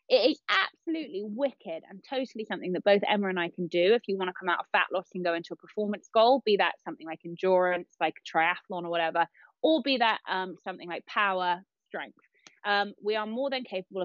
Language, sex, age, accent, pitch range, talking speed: English, female, 20-39, British, 175-220 Hz, 220 wpm